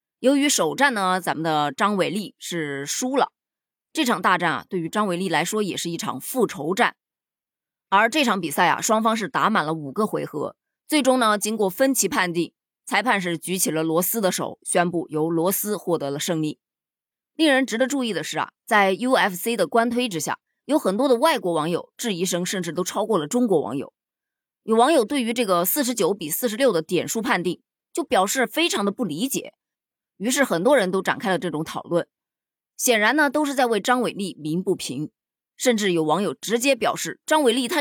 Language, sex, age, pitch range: Chinese, female, 20-39, 175-250 Hz